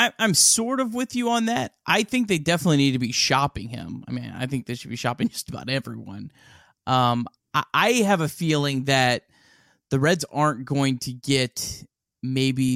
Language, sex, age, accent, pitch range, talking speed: English, male, 20-39, American, 120-140 Hz, 190 wpm